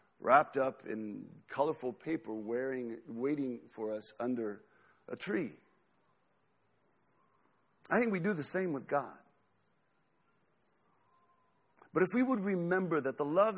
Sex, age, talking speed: male, 50-69, 120 wpm